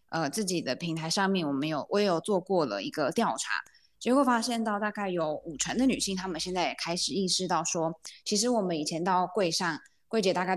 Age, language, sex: 20-39, Chinese, female